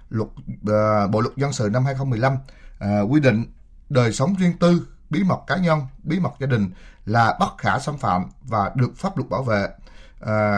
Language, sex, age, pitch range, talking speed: Vietnamese, male, 20-39, 105-150 Hz, 195 wpm